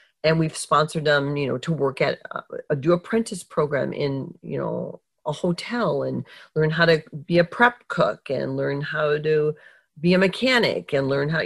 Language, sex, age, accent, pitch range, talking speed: English, female, 40-59, American, 150-205 Hz, 195 wpm